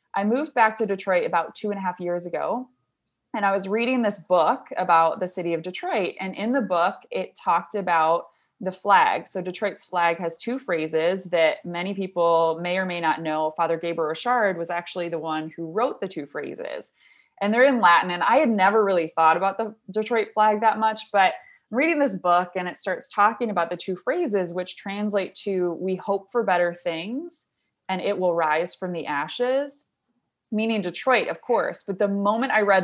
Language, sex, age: English, female, 20-39